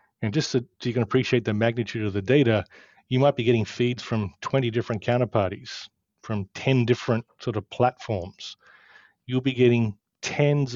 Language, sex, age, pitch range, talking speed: English, male, 40-59, 110-130 Hz, 165 wpm